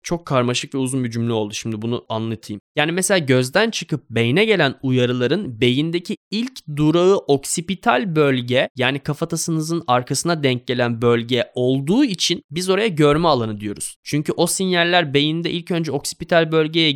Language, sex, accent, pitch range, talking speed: Turkish, male, native, 120-170 Hz, 150 wpm